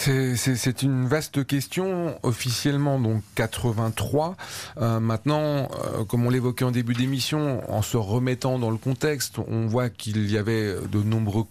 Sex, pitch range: male, 110-140 Hz